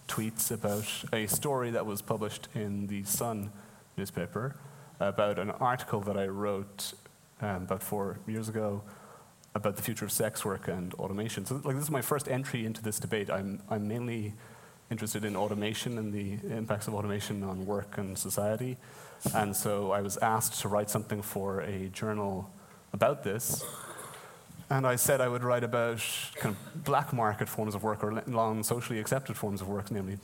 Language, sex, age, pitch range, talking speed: English, male, 30-49, 100-120 Hz, 180 wpm